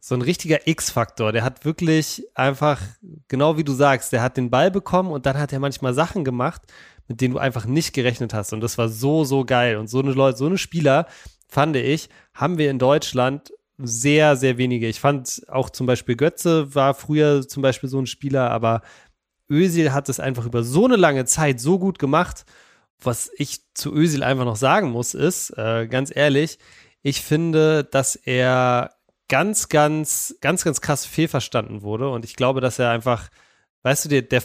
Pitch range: 125-155 Hz